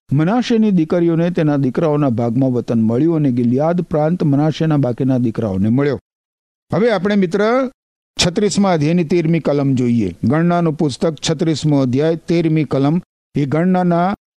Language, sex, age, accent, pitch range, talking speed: Gujarati, male, 50-69, native, 105-155 Hz, 125 wpm